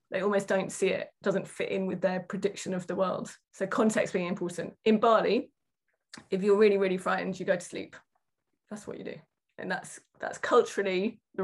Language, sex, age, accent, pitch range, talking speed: English, female, 20-39, British, 185-220 Hz, 200 wpm